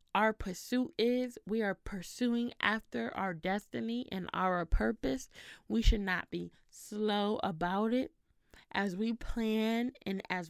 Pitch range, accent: 190-240 Hz, American